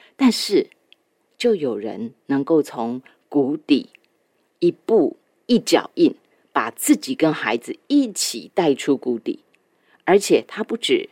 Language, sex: Chinese, female